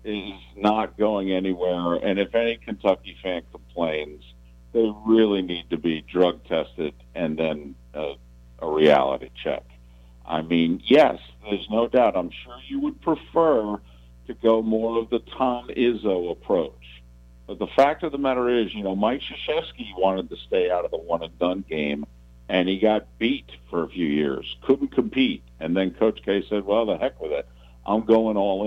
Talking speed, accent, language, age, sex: 175 wpm, American, English, 50-69, male